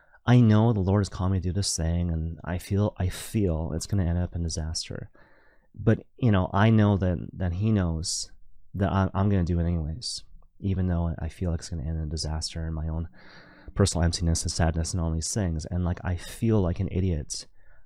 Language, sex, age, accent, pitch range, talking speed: English, male, 30-49, American, 85-105 Hz, 230 wpm